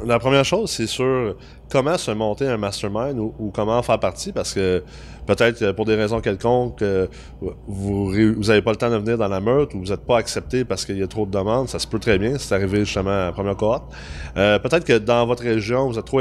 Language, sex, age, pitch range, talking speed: French, male, 20-39, 95-125 Hz, 250 wpm